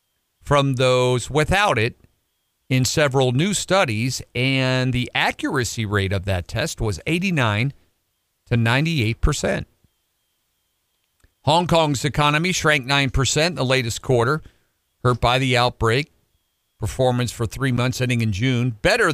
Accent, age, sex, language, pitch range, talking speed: American, 50-69, male, English, 110-140 Hz, 125 wpm